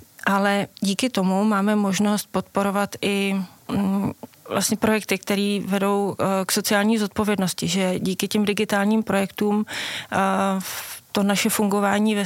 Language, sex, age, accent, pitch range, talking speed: Czech, female, 30-49, native, 195-215 Hz, 115 wpm